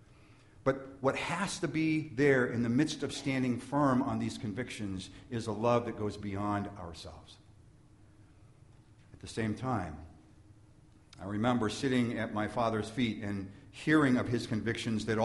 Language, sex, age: English, male, 50-69